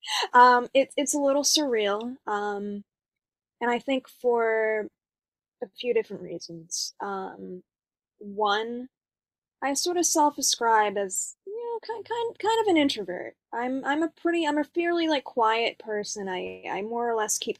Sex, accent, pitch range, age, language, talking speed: female, American, 205-265 Hz, 10-29, English, 160 wpm